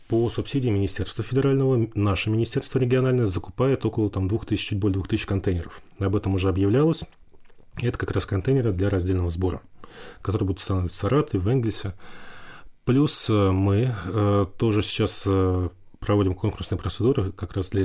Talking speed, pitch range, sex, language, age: 140 wpm, 95-110 Hz, male, Russian, 30-49